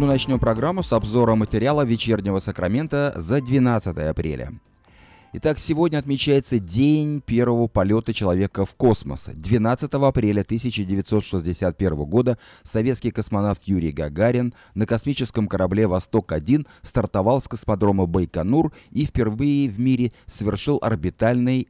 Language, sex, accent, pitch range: Russian, male, native, 90-125 Hz